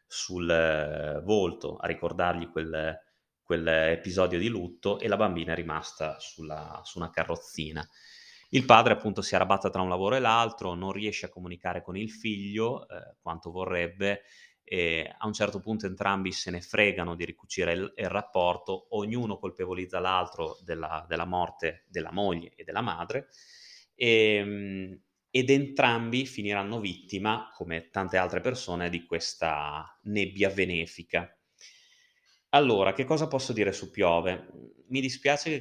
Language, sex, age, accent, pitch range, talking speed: Italian, male, 30-49, native, 85-110 Hz, 145 wpm